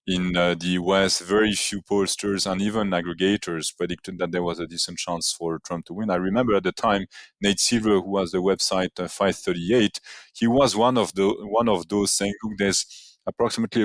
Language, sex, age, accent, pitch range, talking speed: English, male, 30-49, French, 90-110 Hz, 200 wpm